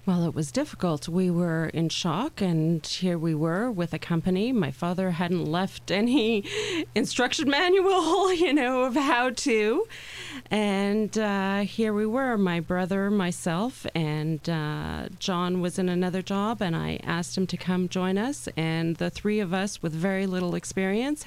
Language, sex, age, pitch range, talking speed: English, female, 40-59, 165-210 Hz, 165 wpm